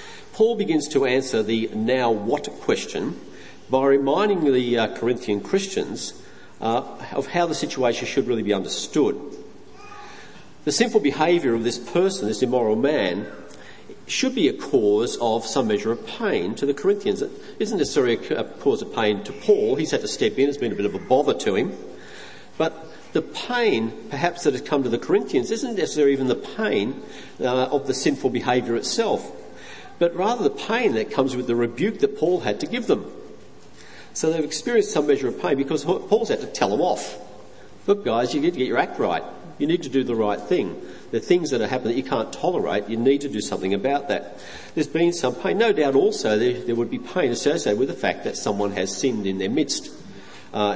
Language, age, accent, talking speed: English, 50-69, Australian, 205 wpm